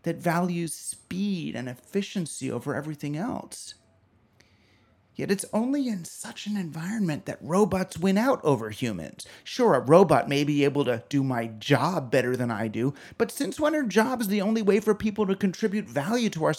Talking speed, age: 180 wpm, 30-49